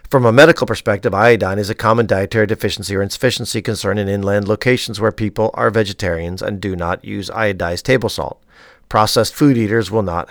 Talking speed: 185 wpm